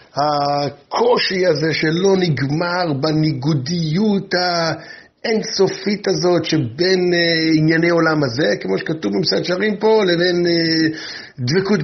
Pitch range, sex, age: 130-180 Hz, male, 50-69